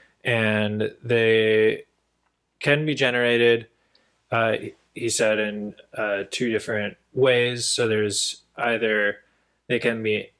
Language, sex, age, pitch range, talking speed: English, male, 20-39, 100-120 Hz, 110 wpm